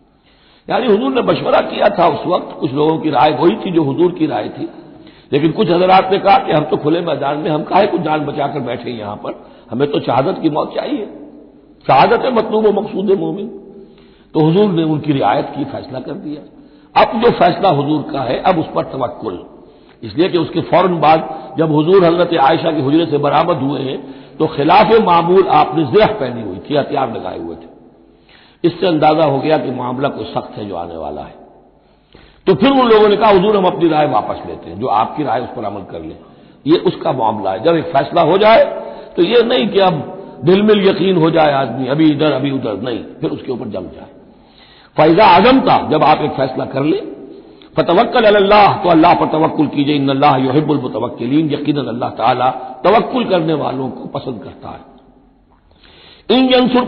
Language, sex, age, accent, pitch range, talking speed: Hindi, male, 60-79, native, 140-195 Hz, 195 wpm